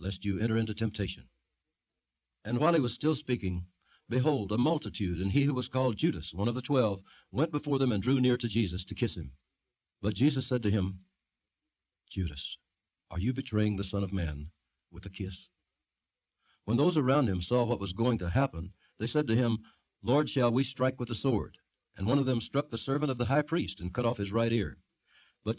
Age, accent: 60-79, American